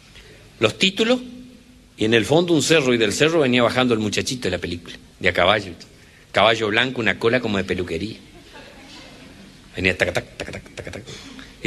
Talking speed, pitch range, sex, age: 170 wpm, 120-180 Hz, male, 50-69